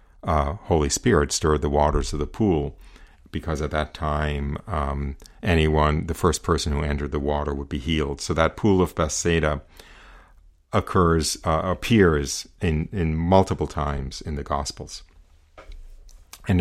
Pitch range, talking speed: 75-85 Hz, 145 wpm